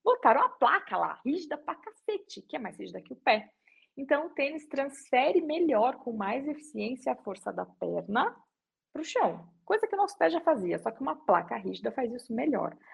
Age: 20-39